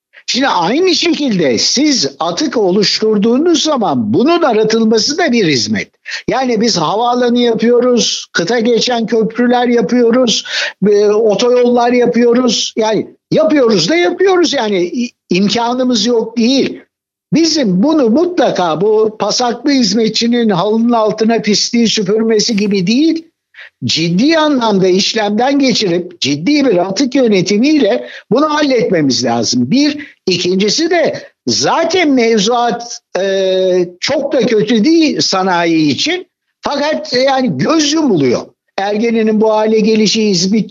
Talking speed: 110 wpm